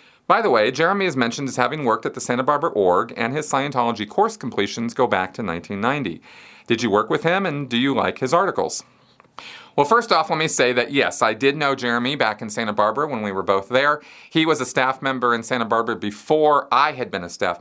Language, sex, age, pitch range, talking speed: English, male, 40-59, 105-130 Hz, 235 wpm